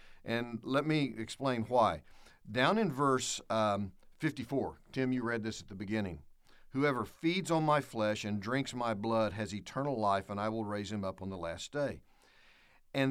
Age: 50-69